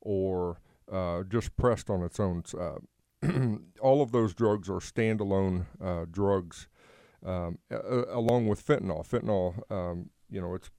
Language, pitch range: English, 90-110 Hz